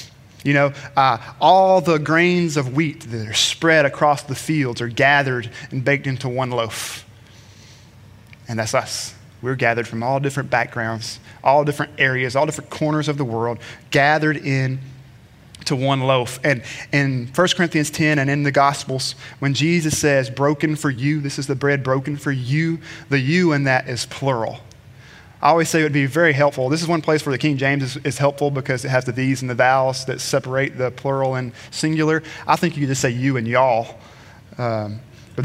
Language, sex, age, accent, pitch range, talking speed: English, male, 20-39, American, 125-155 Hz, 195 wpm